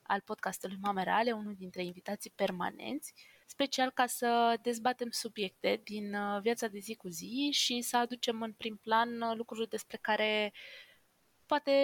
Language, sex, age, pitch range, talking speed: Romanian, female, 20-39, 200-245 Hz, 145 wpm